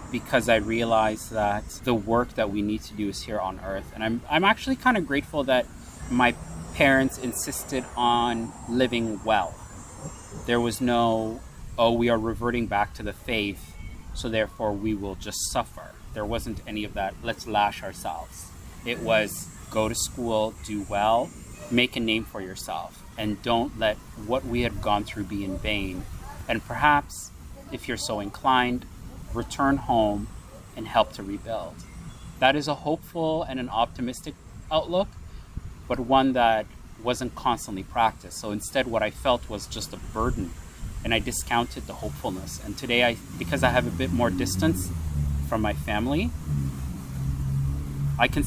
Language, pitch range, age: English, 95-120 Hz, 30-49